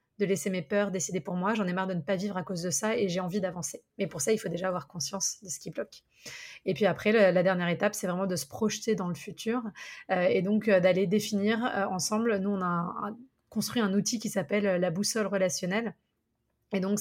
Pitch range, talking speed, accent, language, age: 185-215 Hz, 255 wpm, French, French, 20-39